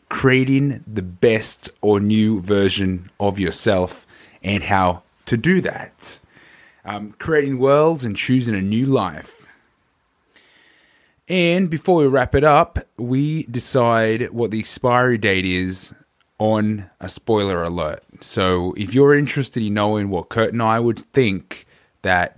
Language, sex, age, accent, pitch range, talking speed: English, male, 20-39, Australian, 100-130 Hz, 135 wpm